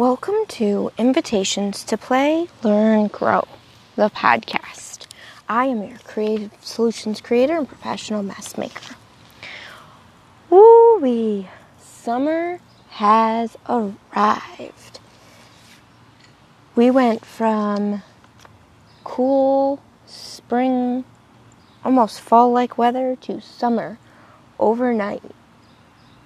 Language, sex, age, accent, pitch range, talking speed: English, female, 20-39, American, 205-255 Hz, 80 wpm